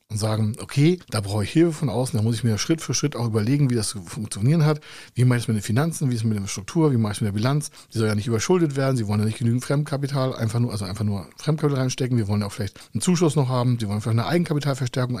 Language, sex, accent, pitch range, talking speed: German, male, German, 110-140 Hz, 300 wpm